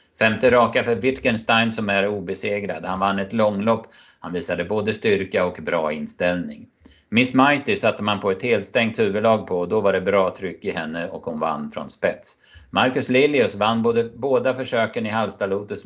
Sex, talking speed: male, 185 wpm